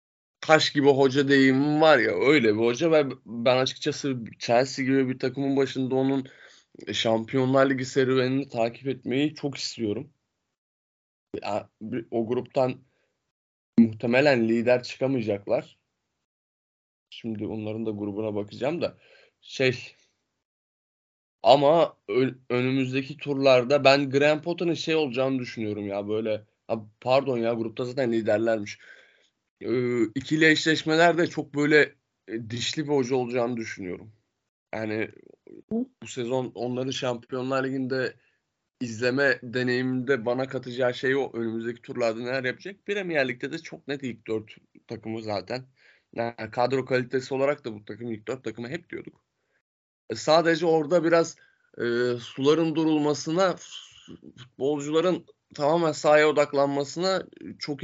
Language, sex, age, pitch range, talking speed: Turkish, male, 20-39, 115-145 Hz, 115 wpm